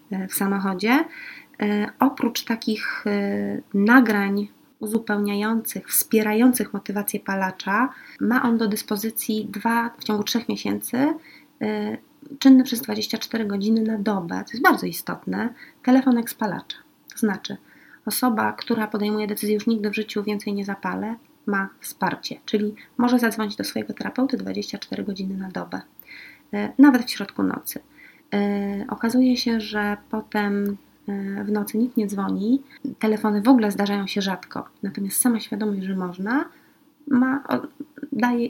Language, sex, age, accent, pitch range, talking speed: Polish, female, 30-49, native, 205-250 Hz, 125 wpm